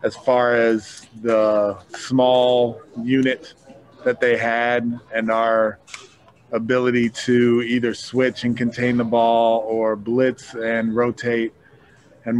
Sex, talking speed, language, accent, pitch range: male, 115 wpm, English, American, 115-135 Hz